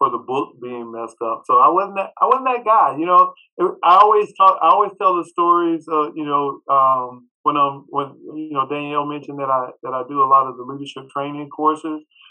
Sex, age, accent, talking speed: male, 40-59, American, 230 wpm